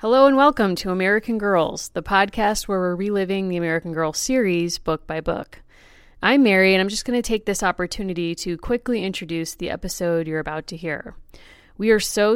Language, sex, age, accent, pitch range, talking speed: English, female, 30-49, American, 170-205 Hz, 195 wpm